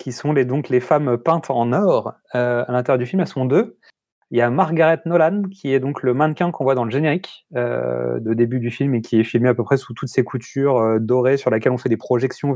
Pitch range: 125-165 Hz